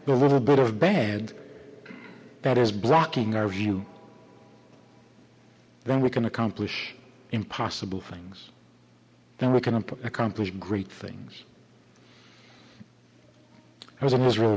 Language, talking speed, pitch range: English, 105 wpm, 95-130 Hz